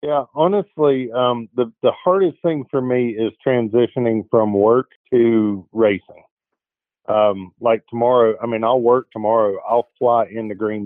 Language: English